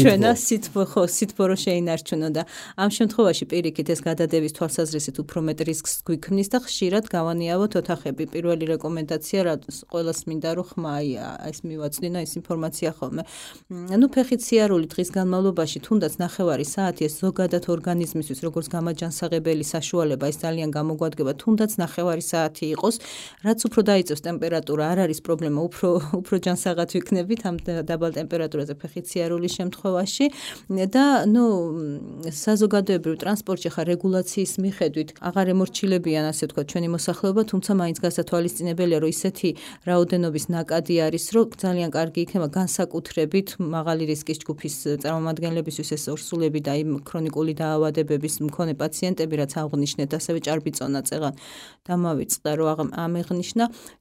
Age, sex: 30-49, female